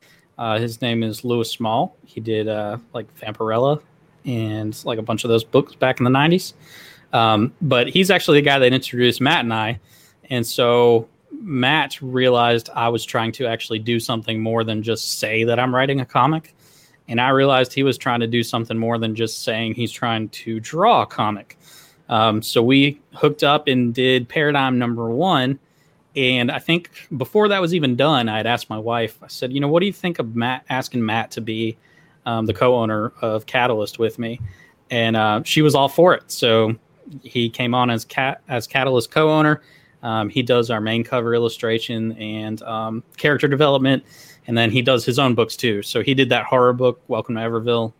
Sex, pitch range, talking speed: male, 115-140 Hz, 200 wpm